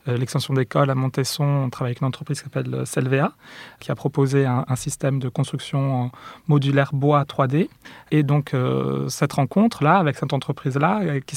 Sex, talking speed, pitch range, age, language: male, 170 wpm, 135-155 Hz, 30-49, French